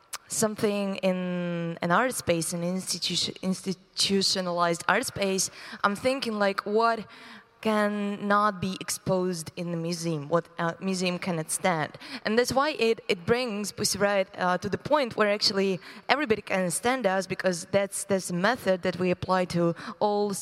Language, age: English, 20-39